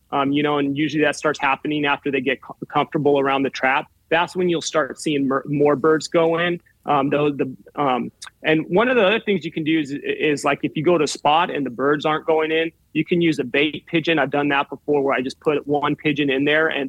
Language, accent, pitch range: English, American, 135-160 Hz